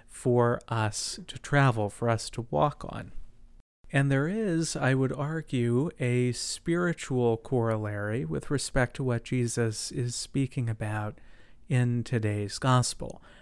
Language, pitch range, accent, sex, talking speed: English, 115-135 Hz, American, male, 130 wpm